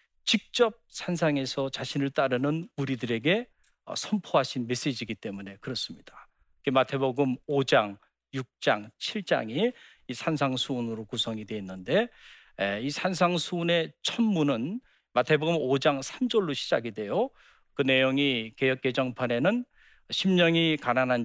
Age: 40-59